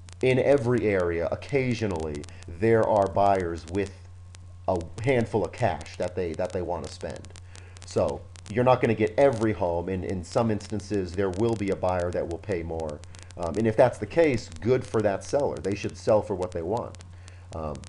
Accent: American